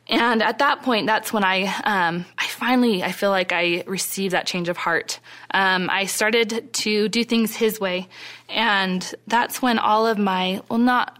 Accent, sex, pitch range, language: American, female, 185-220 Hz, English